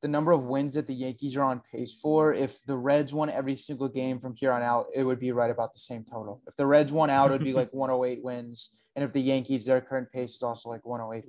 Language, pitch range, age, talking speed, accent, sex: English, 125-145 Hz, 20-39, 275 wpm, American, male